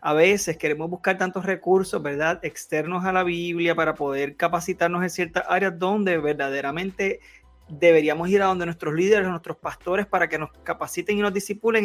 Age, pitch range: 30-49, 165-230 Hz